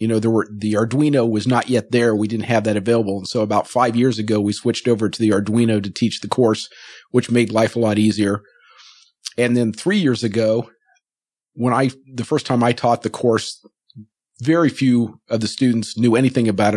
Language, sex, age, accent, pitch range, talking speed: English, male, 50-69, American, 110-125 Hz, 210 wpm